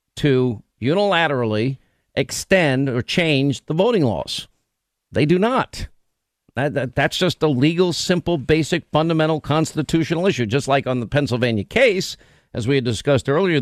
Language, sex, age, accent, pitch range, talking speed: English, male, 50-69, American, 130-160 Hz, 135 wpm